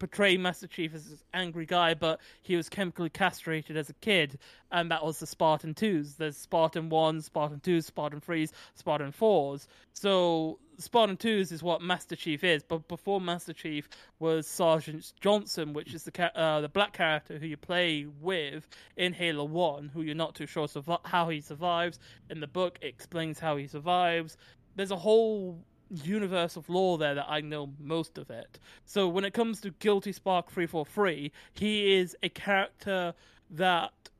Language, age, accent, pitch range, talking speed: English, 20-39, British, 155-185 Hz, 180 wpm